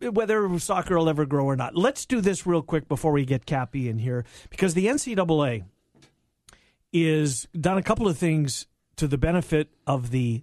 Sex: male